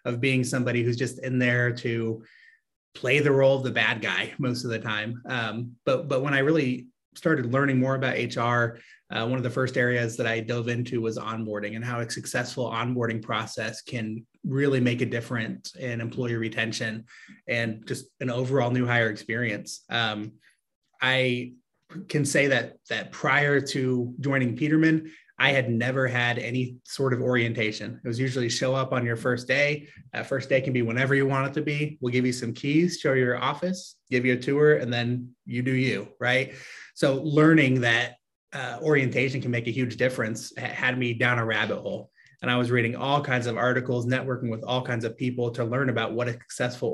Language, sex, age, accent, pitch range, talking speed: English, male, 30-49, American, 120-130 Hz, 200 wpm